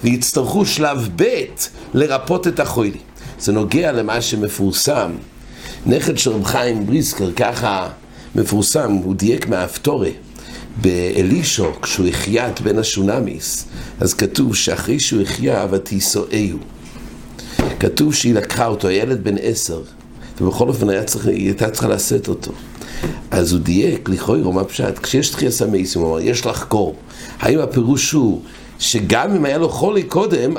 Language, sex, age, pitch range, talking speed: English, male, 60-79, 105-155 Hz, 105 wpm